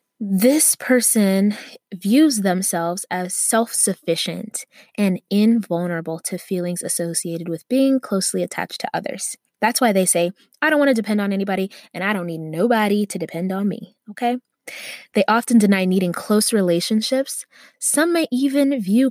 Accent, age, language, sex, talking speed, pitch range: American, 20-39, English, female, 150 wpm, 180-225 Hz